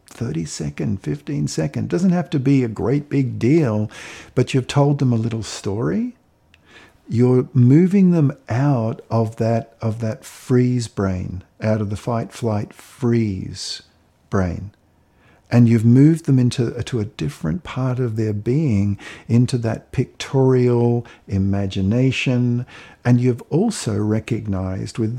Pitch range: 105-140 Hz